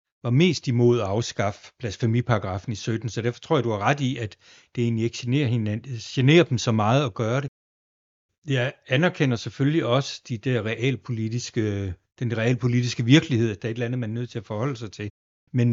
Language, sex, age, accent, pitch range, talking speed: Danish, male, 60-79, native, 115-135 Hz, 200 wpm